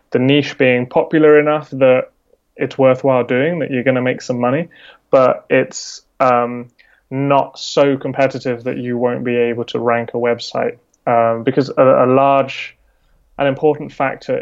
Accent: British